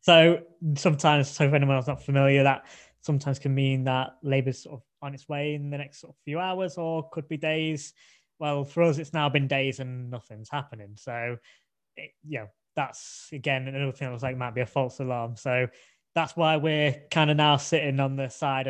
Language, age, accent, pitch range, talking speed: English, 20-39, British, 125-150 Hz, 195 wpm